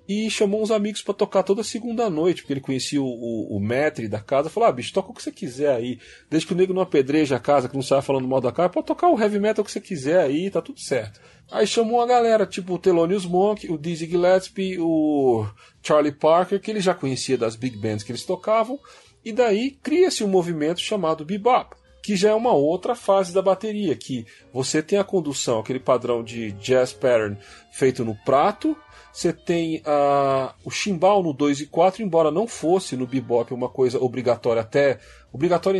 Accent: Brazilian